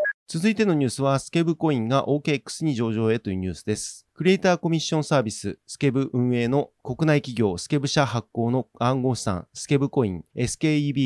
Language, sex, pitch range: Japanese, male, 120-145 Hz